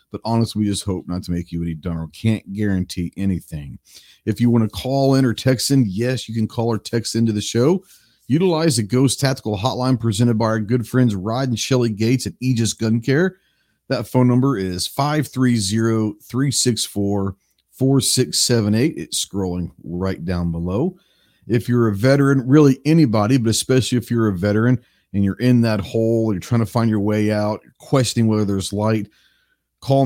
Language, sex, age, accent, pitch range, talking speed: English, male, 50-69, American, 100-125 Hz, 180 wpm